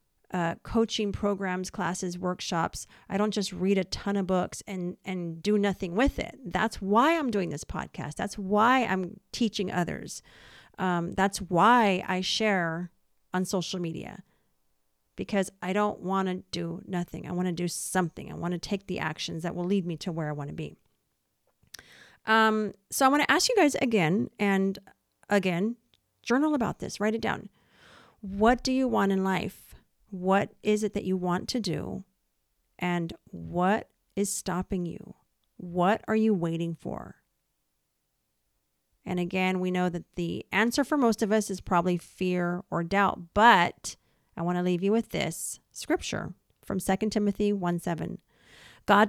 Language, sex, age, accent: English, female, 40-59, American